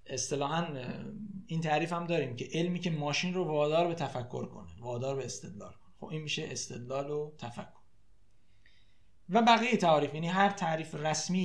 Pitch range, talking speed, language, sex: 135-180 Hz, 155 wpm, Persian, male